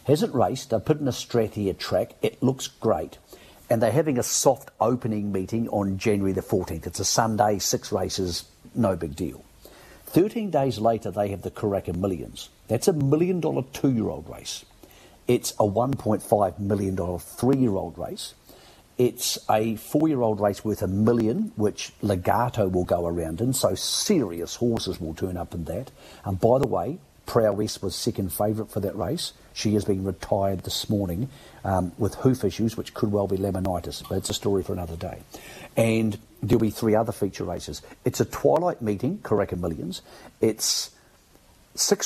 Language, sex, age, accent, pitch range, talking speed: English, male, 50-69, British, 95-115 Hz, 180 wpm